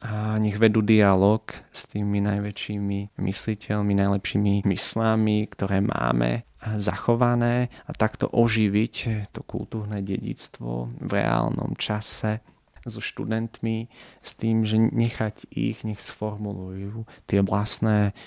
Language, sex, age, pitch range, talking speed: Slovak, male, 20-39, 100-110 Hz, 110 wpm